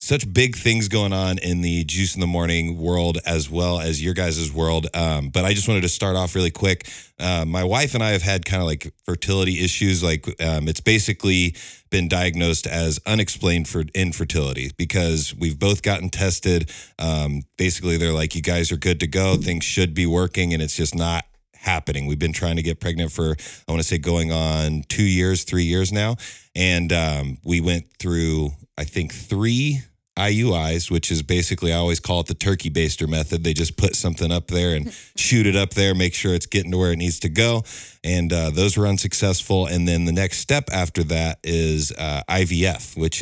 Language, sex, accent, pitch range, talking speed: English, male, American, 80-95 Hz, 205 wpm